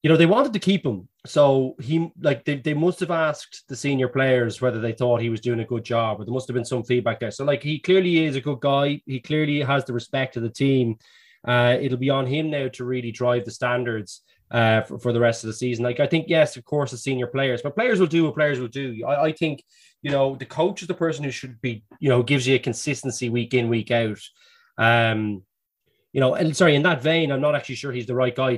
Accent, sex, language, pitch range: Irish, male, English, 120-150 Hz